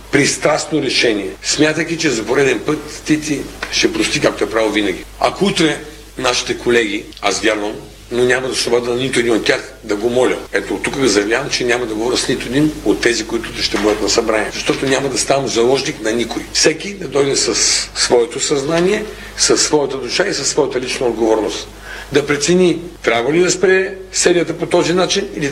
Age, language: 50-69, Bulgarian